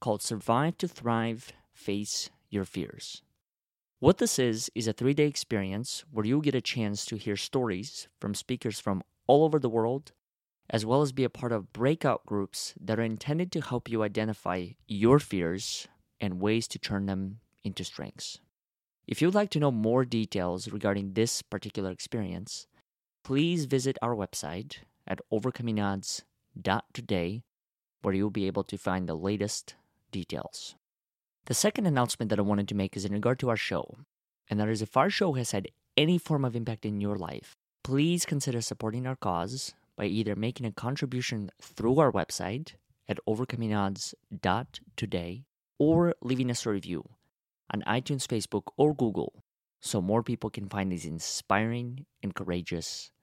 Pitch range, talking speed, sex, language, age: 100-130 Hz, 160 wpm, male, English, 30-49